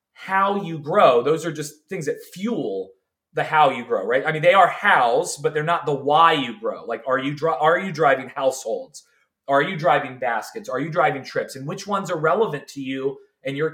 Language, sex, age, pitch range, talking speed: English, male, 30-49, 140-195 Hz, 215 wpm